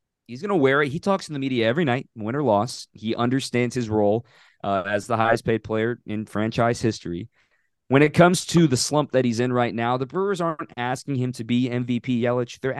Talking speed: 230 wpm